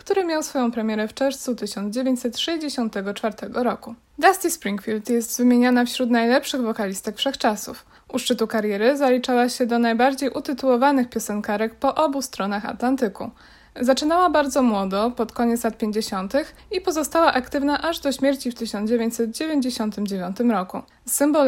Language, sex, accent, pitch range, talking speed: Polish, female, native, 230-275 Hz, 130 wpm